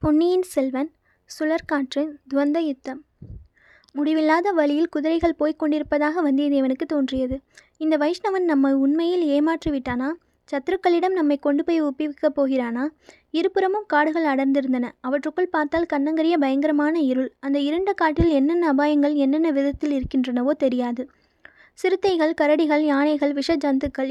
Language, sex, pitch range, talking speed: Tamil, female, 275-315 Hz, 110 wpm